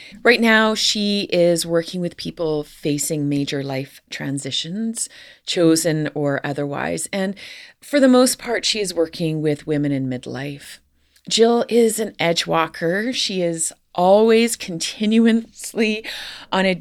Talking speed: 130 wpm